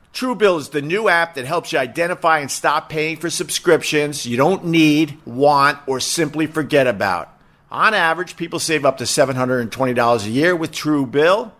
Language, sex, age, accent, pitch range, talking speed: English, male, 50-69, American, 140-175 Hz, 170 wpm